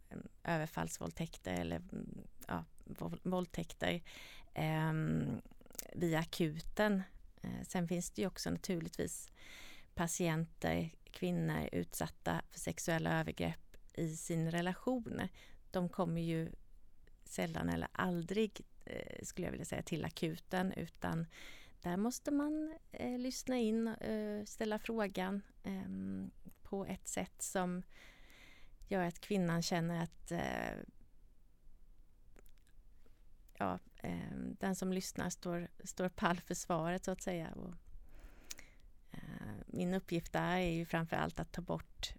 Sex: female